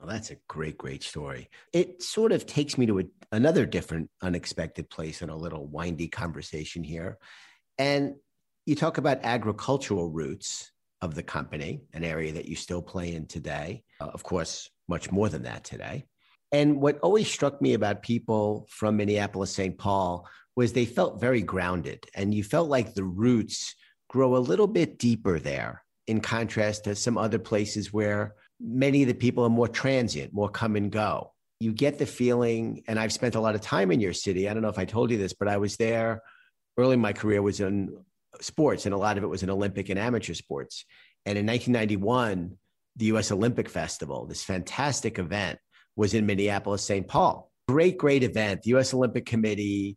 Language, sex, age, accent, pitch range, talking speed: English, male, 50-69, American, 95-120 Hz, 190 wpm